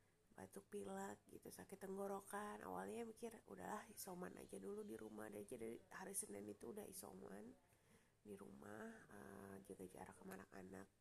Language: Indonesian